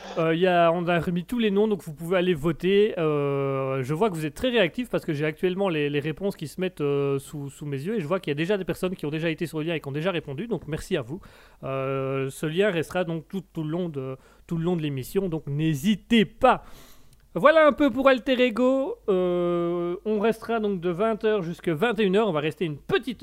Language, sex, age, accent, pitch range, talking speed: French, male, 30-49, French, 150-200 Hz, 255 wpm